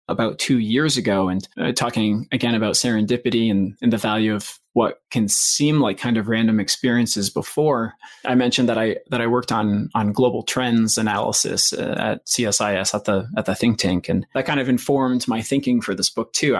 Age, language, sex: 20-39, English, male